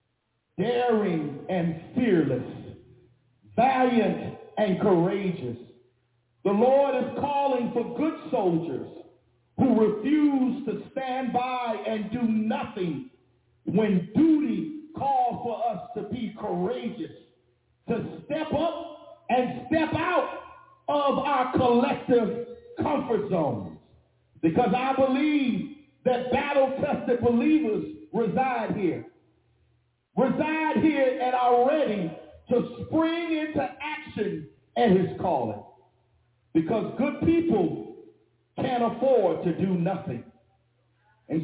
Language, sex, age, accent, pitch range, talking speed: English, male, 50-69, American, 180-285 Hz, 100 wpm